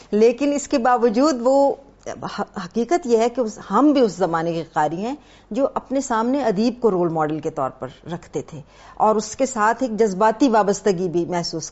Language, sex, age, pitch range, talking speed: Urdu, female, 50-69, 175-245 Hz, 190 wpm